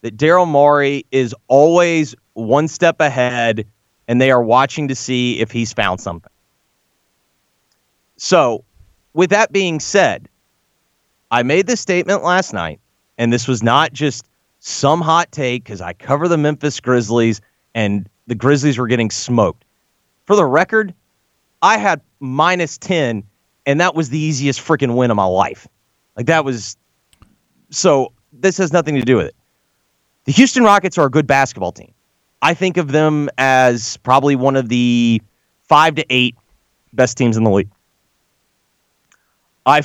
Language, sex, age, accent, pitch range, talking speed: English, male, 30-49, American, 120-170 Hz, 155 wpm